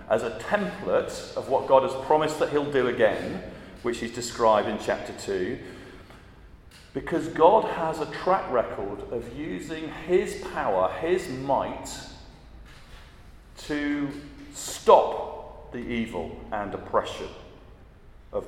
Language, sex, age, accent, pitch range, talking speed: English, male, 40-59, British, 90-140 Hz, 120 wpm